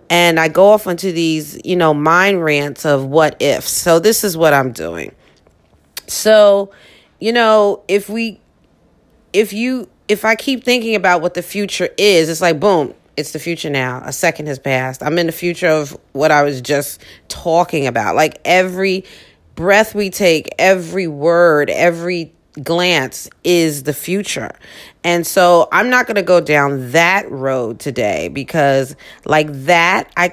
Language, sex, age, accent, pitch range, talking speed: English, female, 30-49, American, 145-190 Hz, 165 wpm